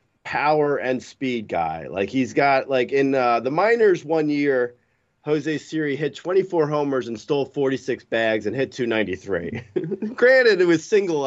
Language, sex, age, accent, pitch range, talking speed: English, male, 30-49, American, 135-215 Hz, 160 wpm